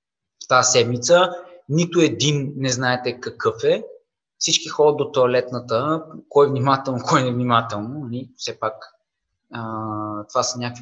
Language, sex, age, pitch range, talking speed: Bulgarian, male, 20-39, 130-175 Hz, 140 wpm